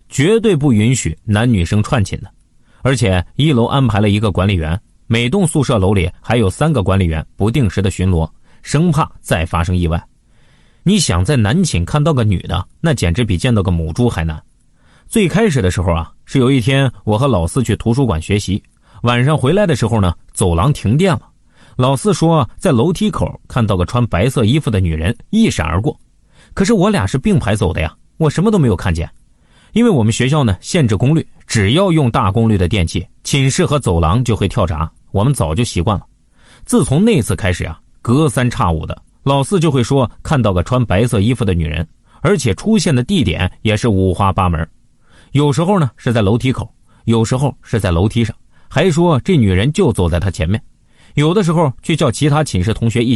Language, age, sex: Chinese, 30-49, male